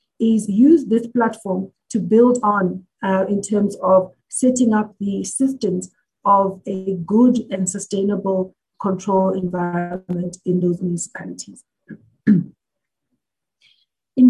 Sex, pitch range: female, 195-235 Hz